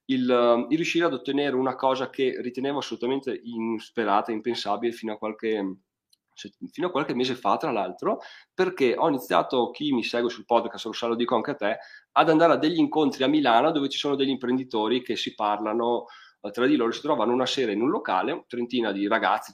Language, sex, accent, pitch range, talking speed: Italian, male, native, 110-125 Hz, 185 wpm